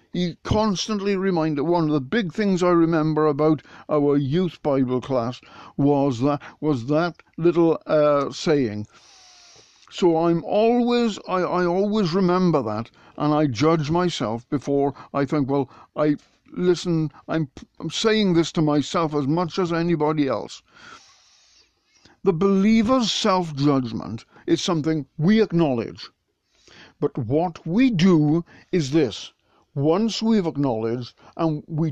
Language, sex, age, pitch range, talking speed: English, male, 60-79, 140-180 Hz, 130 wpm